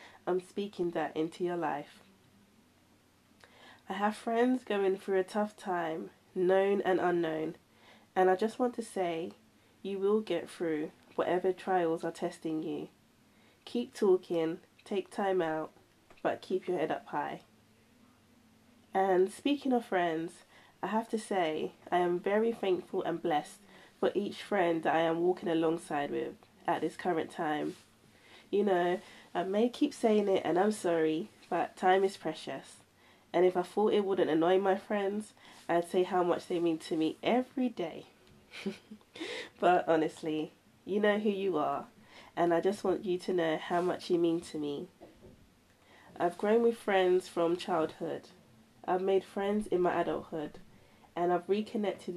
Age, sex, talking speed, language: 20-39, female, 160 wpm, English